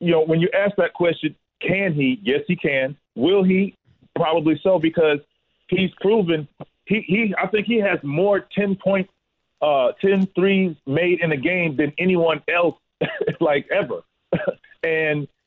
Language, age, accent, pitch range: English, 40-59, American, 150-180 Hz